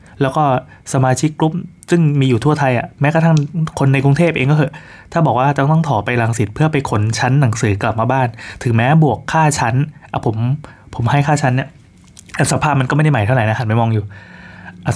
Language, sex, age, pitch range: Thai, male, 20-39, 110-140 Hz